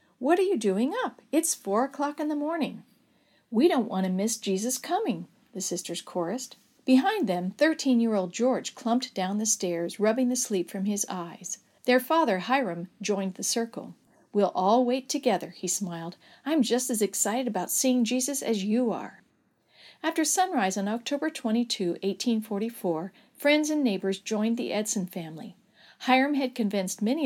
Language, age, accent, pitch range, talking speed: English, 50-69, American, 195-260 Hz, 165 wpm